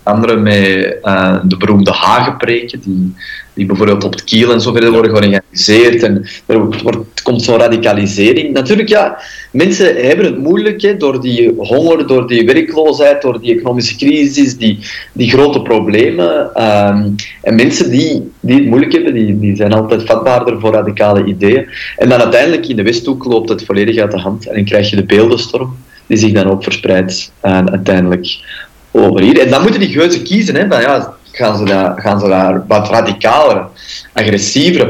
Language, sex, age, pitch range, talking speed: Dutch, male, 30-49, 95-130 Hz, 170 wpm